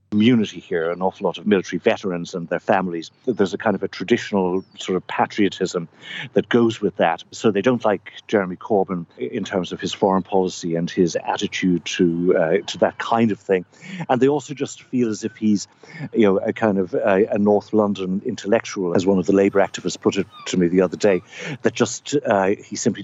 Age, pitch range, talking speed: 60-79, 95-120 Hz, 215 wpm